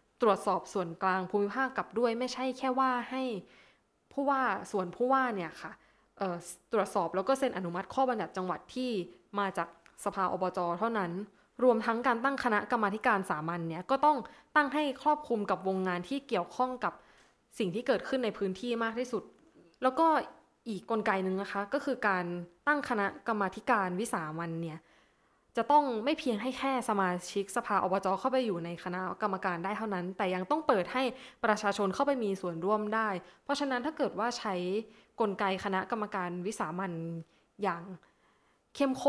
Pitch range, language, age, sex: 185-245 Hz, Thai, 10-29, female